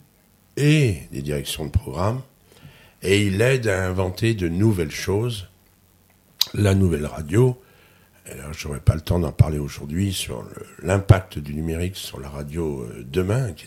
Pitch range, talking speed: 75-100 Hz, 160 wpm